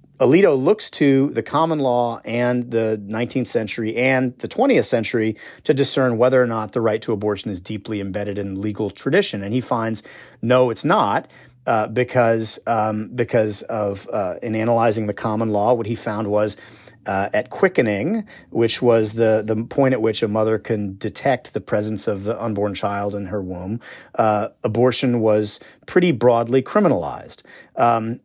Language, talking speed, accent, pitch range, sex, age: English, 170 wpm, American, 105-130 Hz, male, 40-59